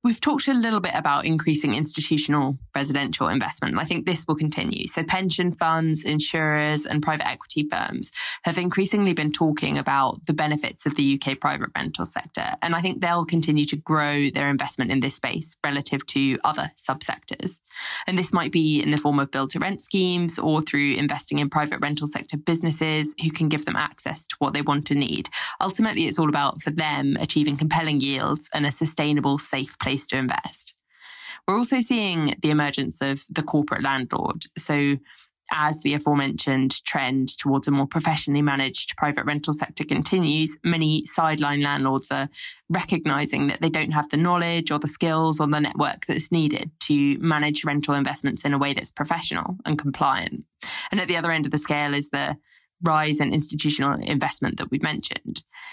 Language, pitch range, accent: English, 145-165 Hz, British